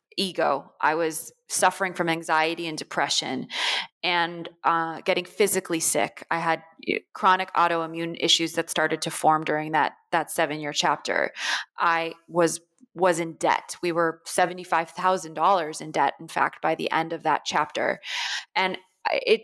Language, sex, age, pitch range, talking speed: English, female, 20-39, 160-185 Hz, 155 wpm